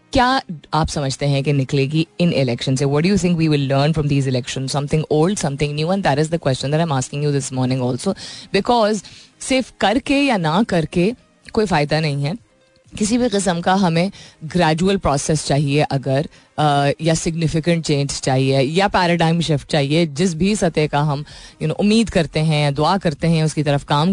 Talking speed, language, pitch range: 190 wpm, Hindi, 145-185 Hz